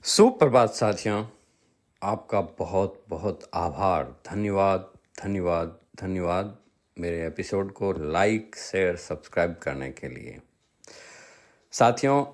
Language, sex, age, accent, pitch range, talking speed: Hindi, male, 50-69, native, 100-145 Hz, 90 wpm